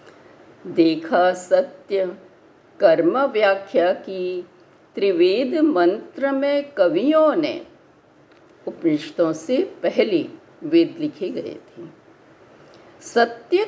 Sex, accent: female, native